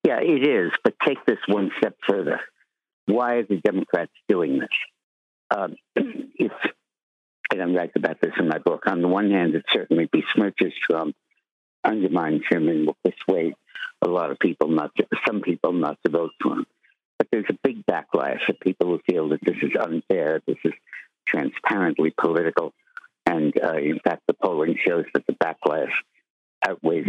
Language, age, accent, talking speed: English, 60-79, American, 175 wpm